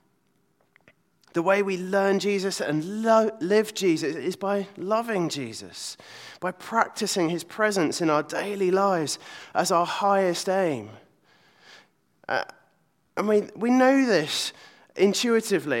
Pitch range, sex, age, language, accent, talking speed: 165-210 Hz, male, 20-39, English, British, 120 wpm